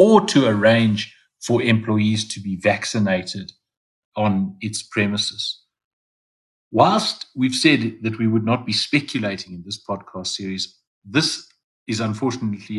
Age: 60-79